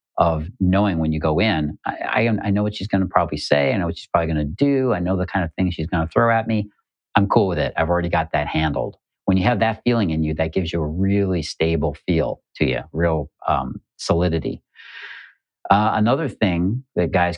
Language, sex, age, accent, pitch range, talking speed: English, male, 50-69, American, 80-95 Hz, 240 wpm